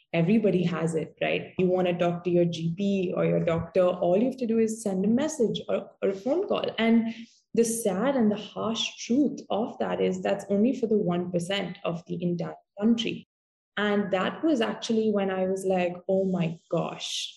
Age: 20-39